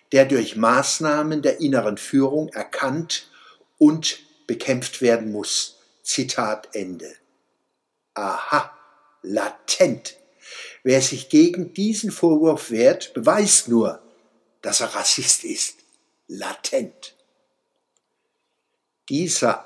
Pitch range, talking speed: 125-185 Hz, 90 wpm